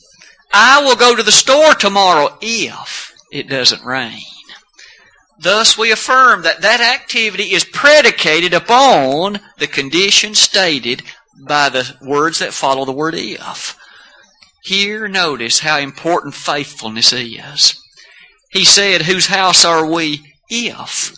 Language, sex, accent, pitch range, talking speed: English, male, American, 145-215 Hz, 125 wpm